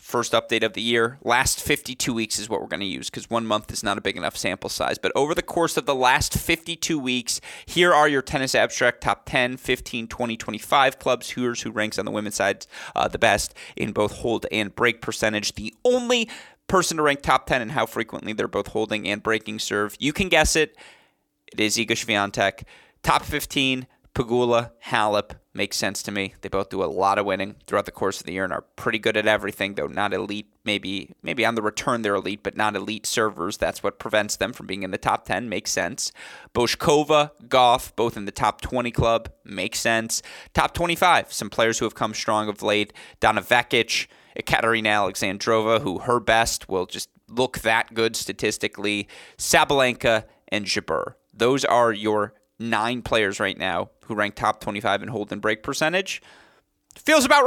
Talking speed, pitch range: 200 wpm, 105-130 Hz